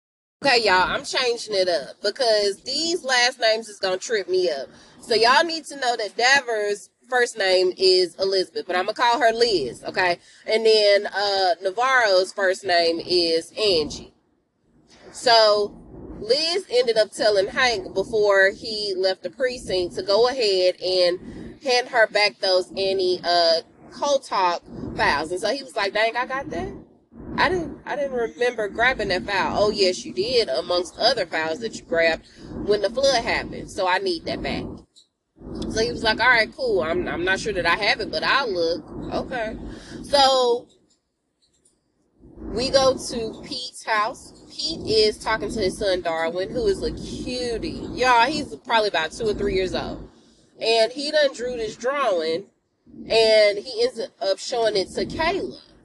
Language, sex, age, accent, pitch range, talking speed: English, female, 20-39, American, 190-260 Hz, 170 wpm